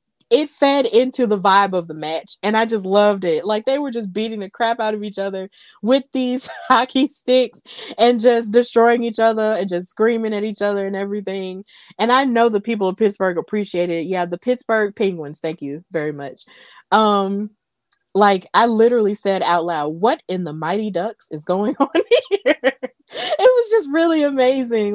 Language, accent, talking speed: English, American, 190 wpm